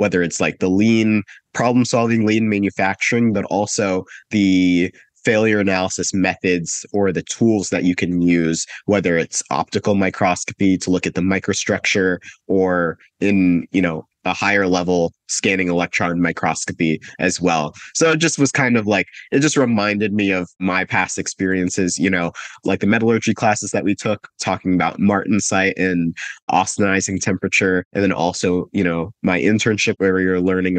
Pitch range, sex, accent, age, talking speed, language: 90-105 Hz, male, American, 30-49, 160 wpm, English